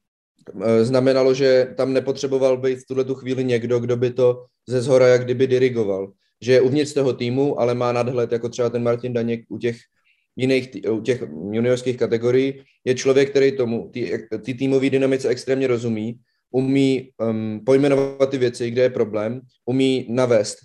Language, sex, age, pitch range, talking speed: Czech, male, 20-39, 120-130 Hz, 170 wpm